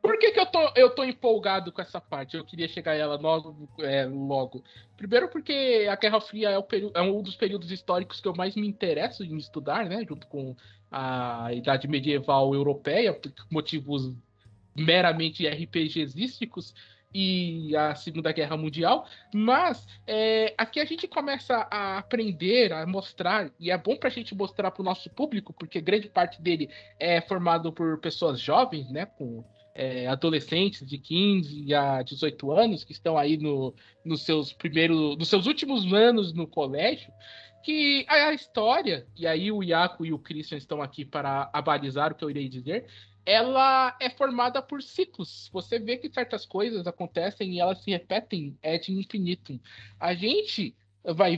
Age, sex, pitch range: 20-39, male, 150-210 Hz